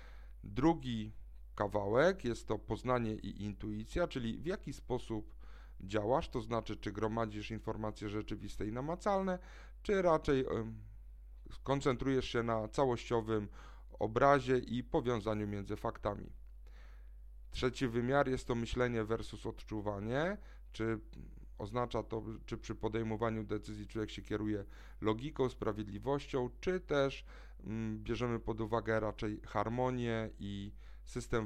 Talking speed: 115 wpm